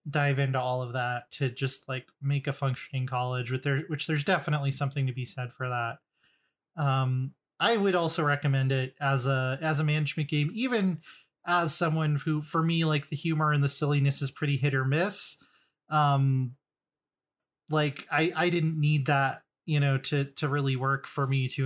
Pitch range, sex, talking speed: 135-155 Hz, male, 190 wpm